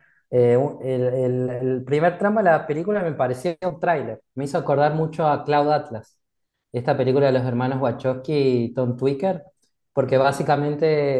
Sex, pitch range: male, 125-160 Hz